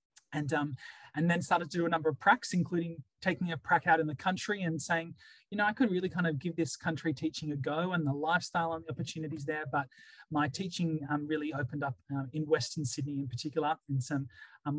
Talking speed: 230 wpm